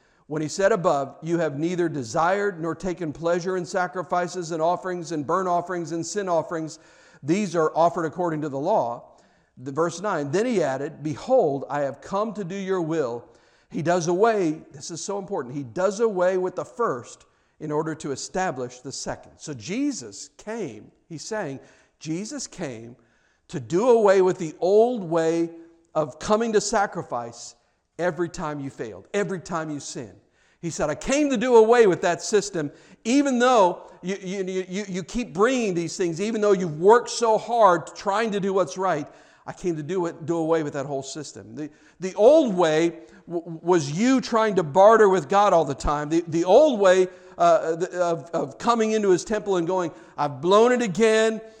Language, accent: English, American